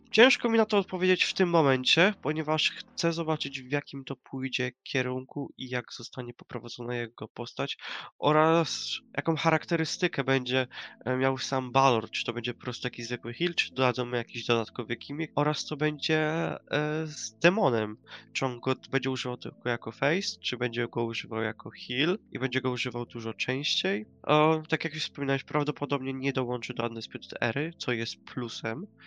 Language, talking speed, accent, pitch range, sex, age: Polish, 170 wpm, native, 125-150 Hz, male, 20-39